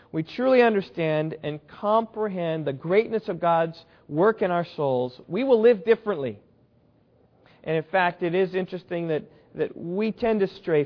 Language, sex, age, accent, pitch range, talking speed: English, male, 40-59, American, 140-180 Hz, 160 wpm